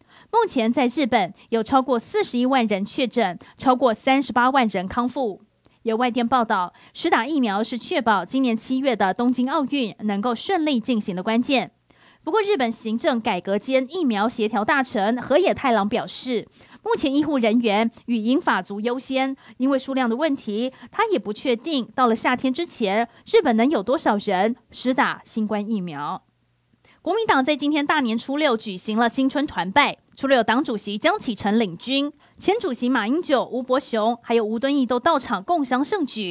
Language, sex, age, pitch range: Chinese, female, 30-49, 225-275 Hz